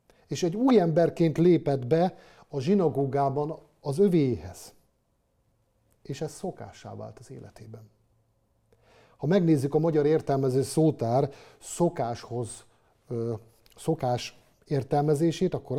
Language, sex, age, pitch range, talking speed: Hungarian, male, 50-69, 125-180 Hz, 100 wpm